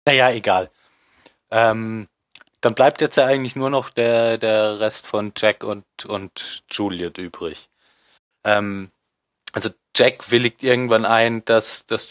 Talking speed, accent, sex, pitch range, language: 135 wpm, German, male, 100-120 Hz, German